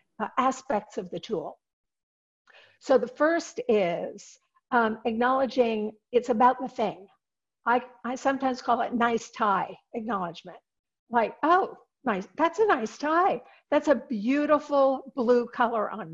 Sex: female